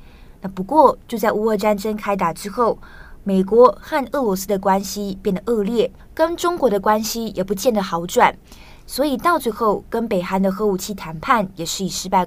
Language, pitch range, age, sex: Chinese, 185-230 Hz, 20-39, female